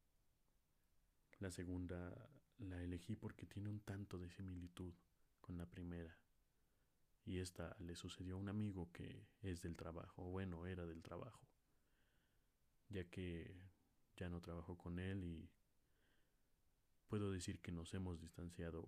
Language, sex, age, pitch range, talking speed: Spanish, male, 30-49, 85-100 Hz, 135 wpm